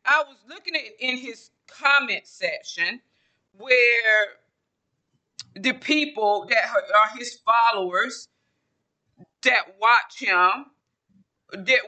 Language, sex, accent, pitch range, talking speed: English, female, American, 205-280 Hz, 95 wpm